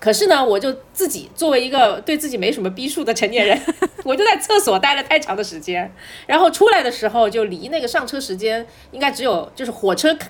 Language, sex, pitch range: Chinese, female, 210-345 Hz